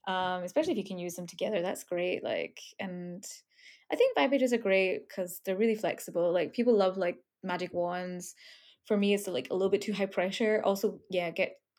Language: English